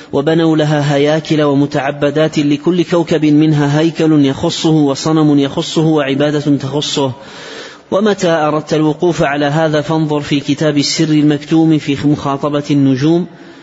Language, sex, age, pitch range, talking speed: Arabic, male, 30-49, 145-155 Hz, 115 wpm